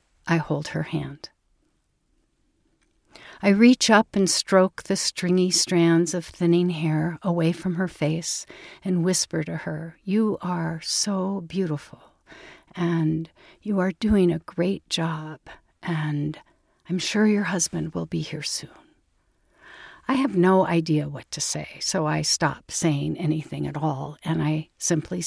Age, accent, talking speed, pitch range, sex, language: 60-79, American, 140 wpm, 160-185 Hz, female, English